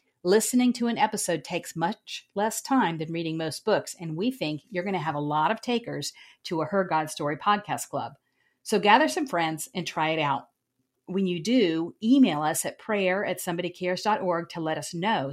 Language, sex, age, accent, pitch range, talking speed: English, female, 50-69, American, 150-210 Hz, 200 wpm